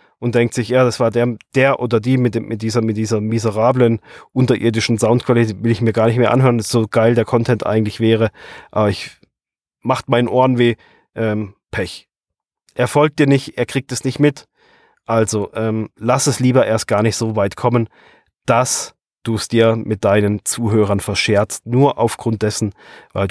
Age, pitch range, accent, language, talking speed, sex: 30-49, 110-130 Hz, German, German, 185 wpm, male